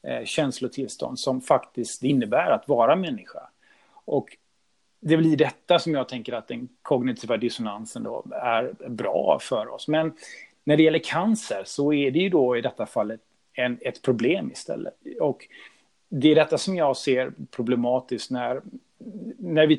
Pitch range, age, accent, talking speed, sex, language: 125-155 Hz, 30-49, native, 150 wpm, male, Swedish